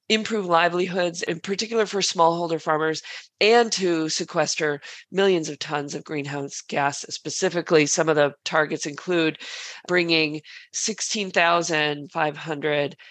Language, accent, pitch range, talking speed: English, American, 145-170 Hz, 110 wpm